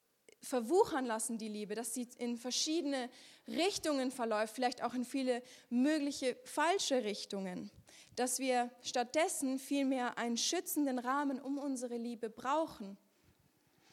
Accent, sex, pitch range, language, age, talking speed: German, female, 235-275 Hz, German, 30-49, 120 wpm